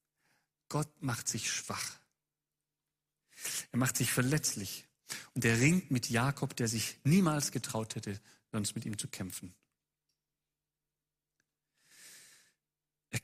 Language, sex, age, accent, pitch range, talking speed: German, male, 40-59, German, 110-135 Hz, 110 wpm